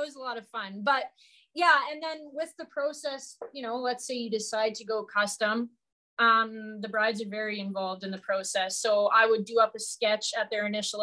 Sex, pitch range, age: female, 205-240 Hz, 20-39